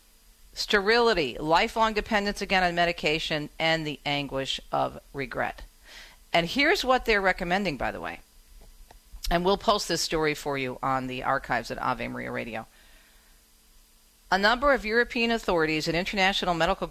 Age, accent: 50-69, American